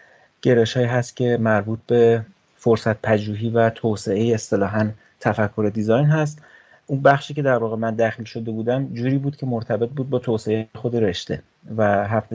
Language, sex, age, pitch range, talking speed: Persian, male, 30-49, 105-120 Hz, 160 wpm